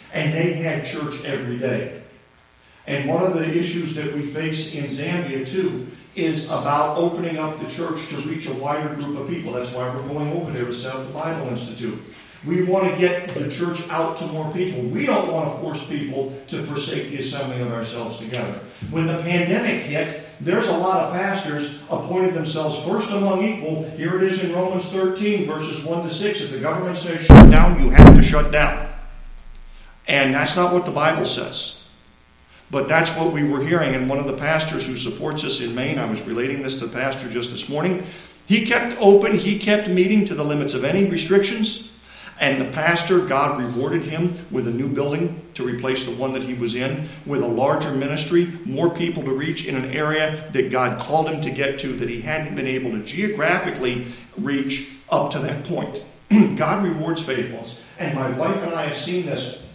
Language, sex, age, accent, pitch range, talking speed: English, male, 50-69, American, 135-175 Hz, 205 wpm